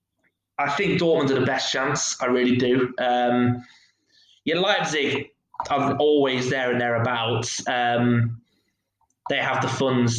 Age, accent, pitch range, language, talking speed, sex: 20-39, British, 115-130 Hz, English, 135 wpm, male